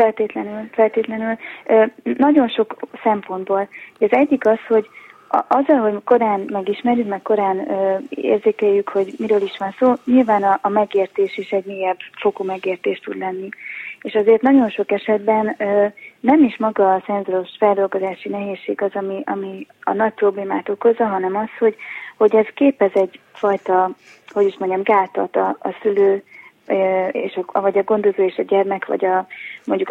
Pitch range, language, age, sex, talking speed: 195-220 Hz, Hungarian, 20-39, female, 150 wpm